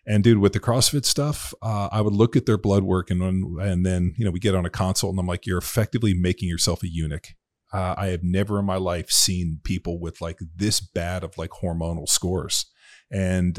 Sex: male